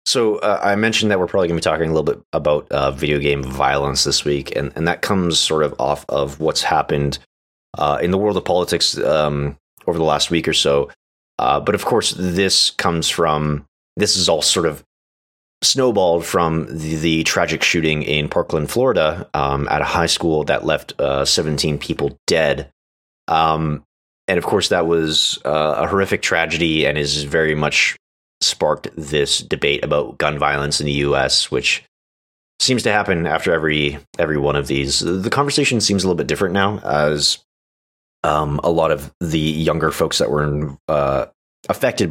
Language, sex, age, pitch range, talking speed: English, male, 30-49, 70-80 Hz, 185 wpm